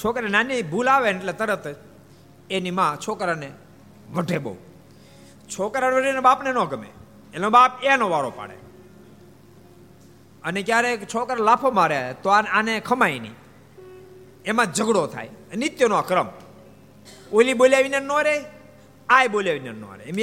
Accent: native